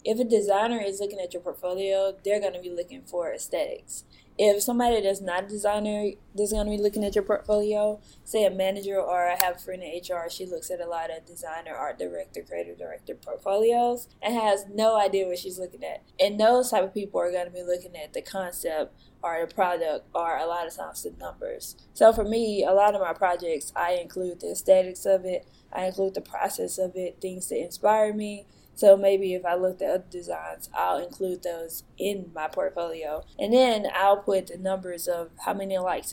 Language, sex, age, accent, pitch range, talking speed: English, female, 20-39, American, 180-210 Hz, 215 wpm